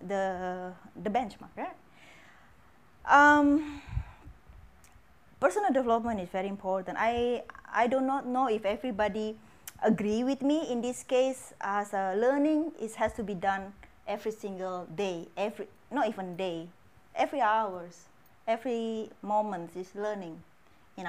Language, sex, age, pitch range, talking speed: English, female, 20-39, 185-240 Hz, 130 wpm